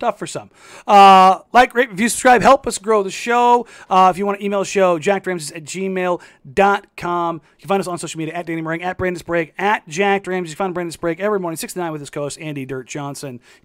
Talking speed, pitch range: 245 wpm, 150-195 Hz